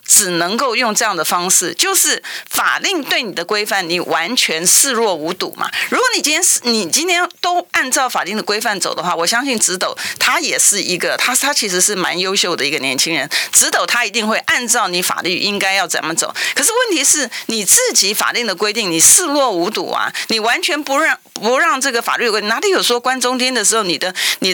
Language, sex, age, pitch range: Chinese, female, 40-59, 195-285 Hz